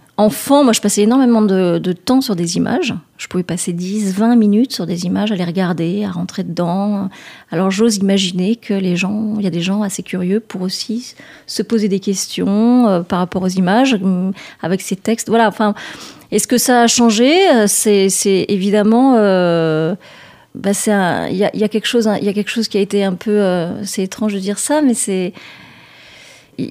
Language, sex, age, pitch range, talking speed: French, female, 30-49, 190-225 Hz, 190 wpm